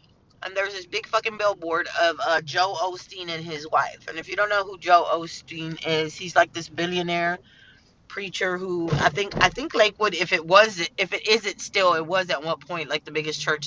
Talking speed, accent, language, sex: 210 wpm, American, English, female